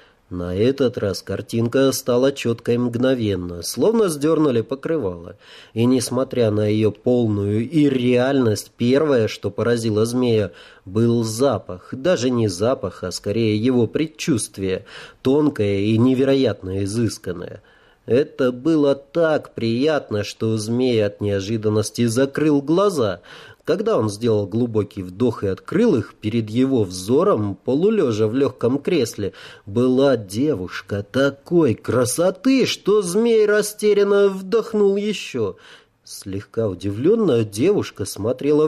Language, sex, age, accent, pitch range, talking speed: Russian, male, 30-49, native, 105-140 Hz, 110 wpm